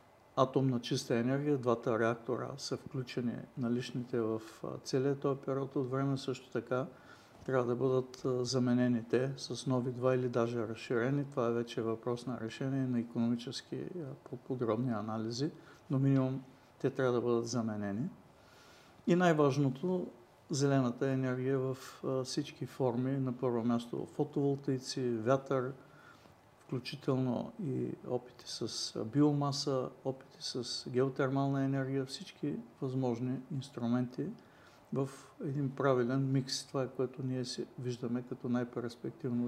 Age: 50-69